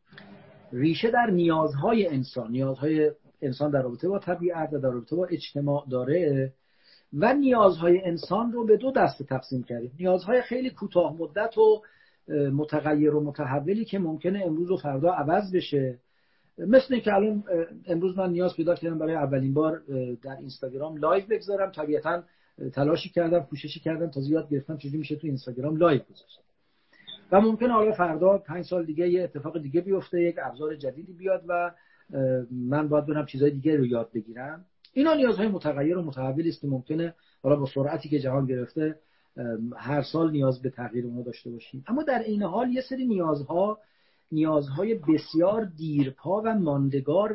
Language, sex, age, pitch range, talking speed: Persian, male, 50-69, 140-185 Hz, 160 wpm